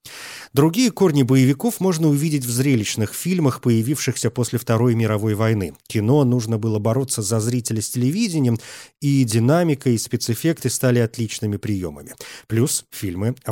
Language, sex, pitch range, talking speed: Russian, male, 115-150 Hz, 140 wpm